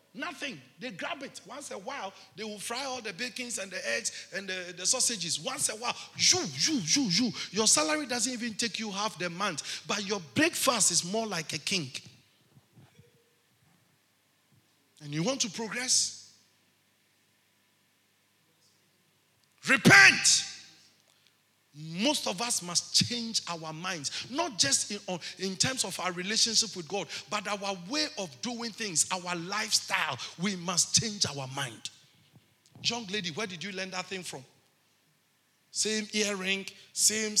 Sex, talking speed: male, 150 wpm